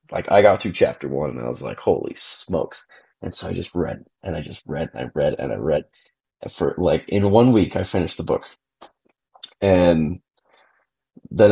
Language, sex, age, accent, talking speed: English, male, 20-39, American, 200 wpm